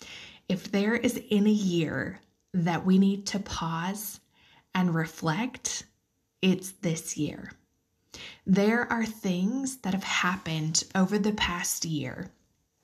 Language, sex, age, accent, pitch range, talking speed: English, female, 20-39, American, 170-210 Hz, 115 wpm